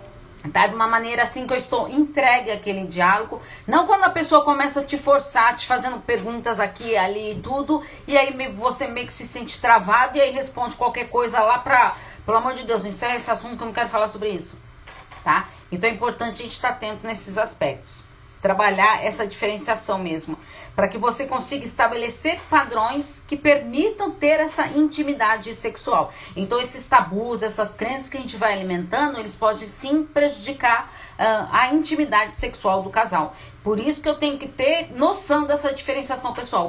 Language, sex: Portuguese, female